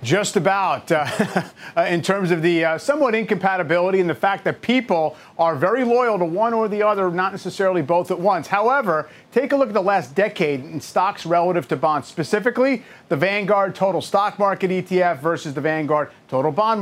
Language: English